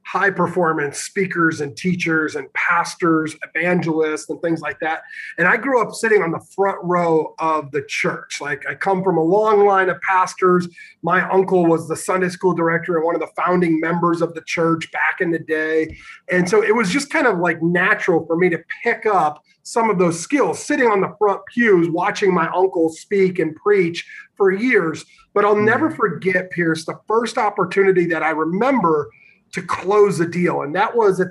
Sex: male